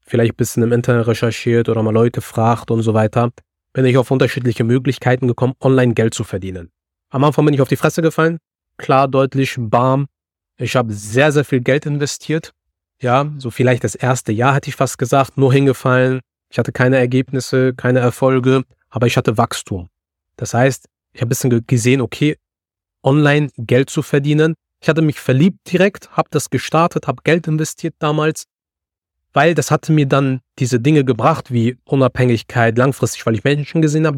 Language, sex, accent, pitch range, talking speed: German, male, German, 115-145 Hz, 180 wpm